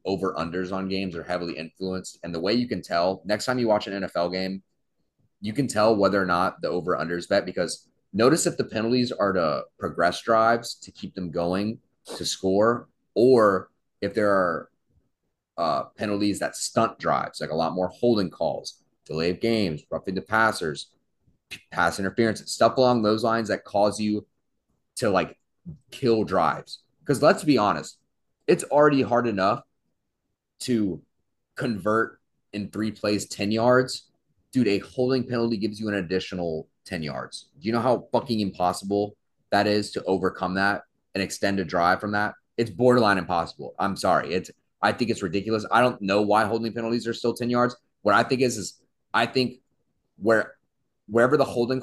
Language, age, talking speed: English, 30-49, 175 wpm